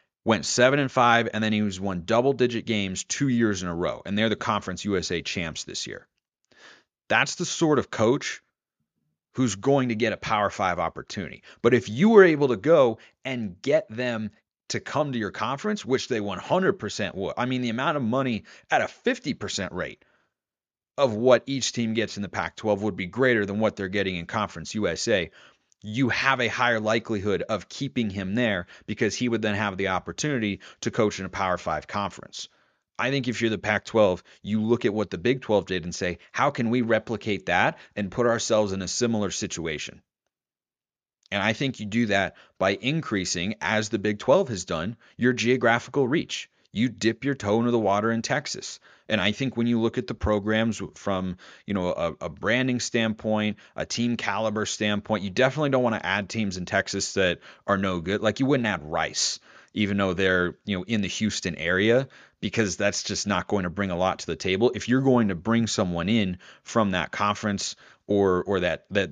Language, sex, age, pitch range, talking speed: English, male, 30-49, 100-120 Hz, 205 wpm